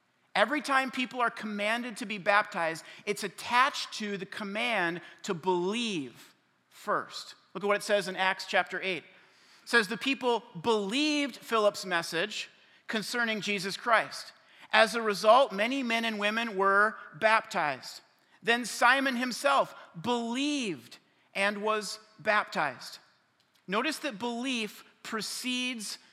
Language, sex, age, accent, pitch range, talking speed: English, male, 40-59, American, 190-235 Hz, 125 wpm